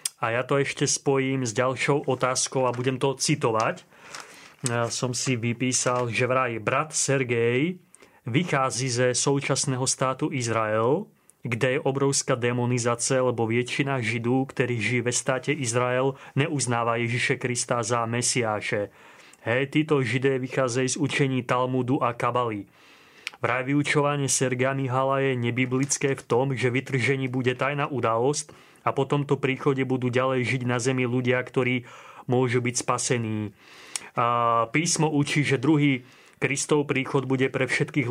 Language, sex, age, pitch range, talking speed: Slovak, male, 30-49, 125-140 Hz, 140 wpm